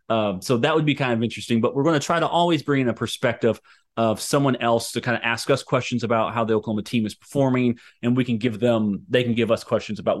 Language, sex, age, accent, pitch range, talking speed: English, male, 30-49, American, 100-125 Hz, 270 wpm